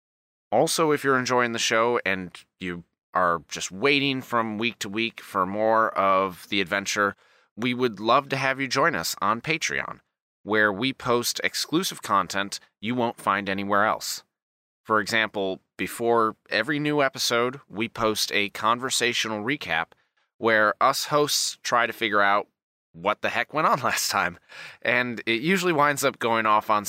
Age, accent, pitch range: 30-49, American, 105-135 Hz